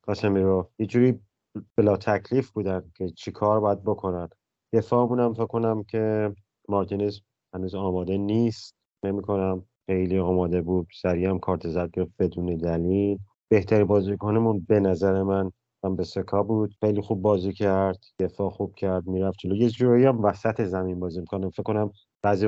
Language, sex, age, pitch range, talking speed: Persian, male, 30-49, 95-110 Hz, 155 wpm